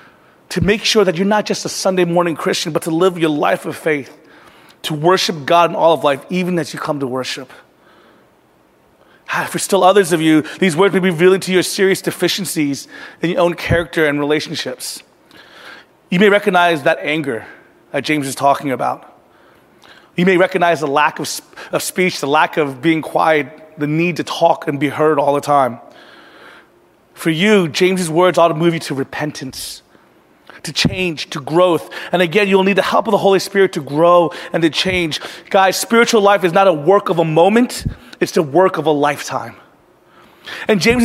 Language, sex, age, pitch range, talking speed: English, male, 30-49, 160-210 Hz, 190 wpm